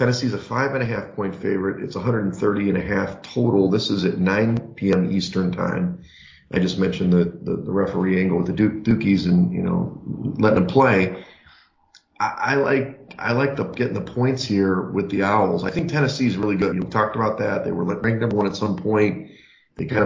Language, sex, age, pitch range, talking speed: English, male, 30-49, 95-125 Hz, 220 wpm